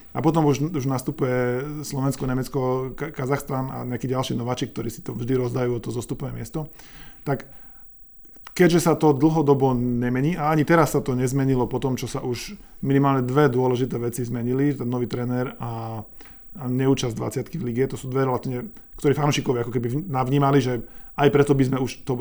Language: Slovak